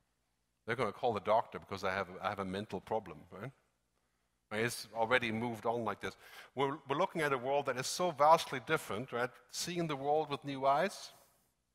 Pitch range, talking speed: 100-145 Hz, 200 wpm